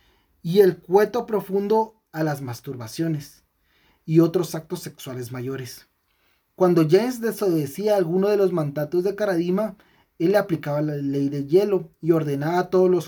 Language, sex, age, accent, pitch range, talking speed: Spanish, male, 30-49, Mexican, 145-190 Hz, 150 wpm